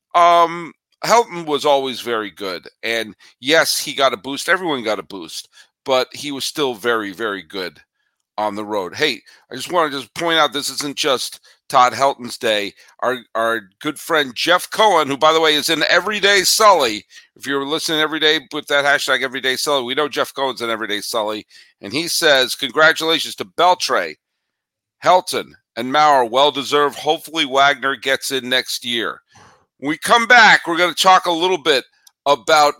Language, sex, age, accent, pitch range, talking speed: English, male, 50-69, American, 130-160 Hz, 180 wpm